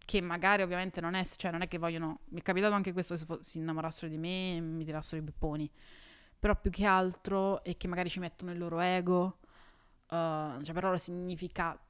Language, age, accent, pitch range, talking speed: Italian, 20-39, native, 160-185 Hz, 205 wpm